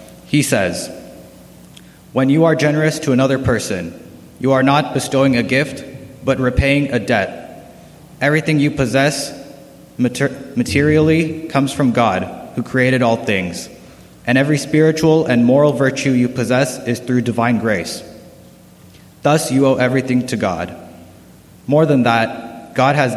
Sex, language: male, English